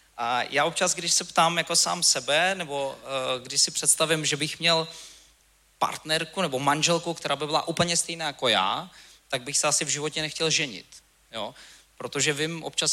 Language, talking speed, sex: Czech, 180 wpm, male